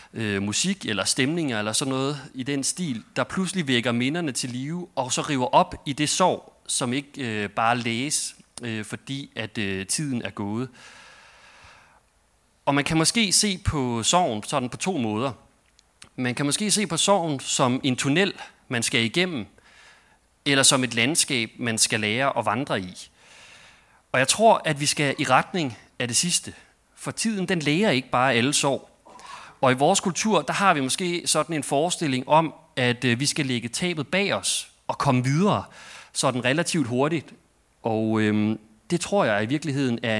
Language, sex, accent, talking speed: Danish, male, native, 170 wpm